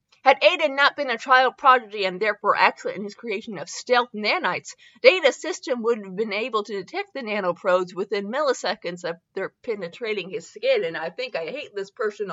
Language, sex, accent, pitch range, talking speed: English, female, American, 200-290 Hz, 195 wpm